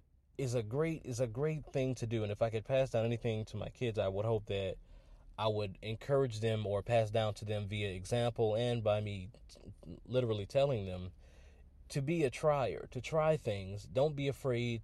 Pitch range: 100-120 Hz